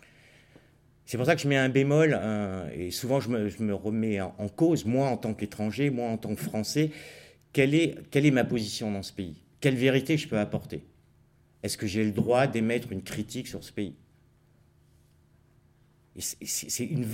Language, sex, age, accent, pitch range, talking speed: French, male, 50-69, French, 90-125 Hz, 200 wpm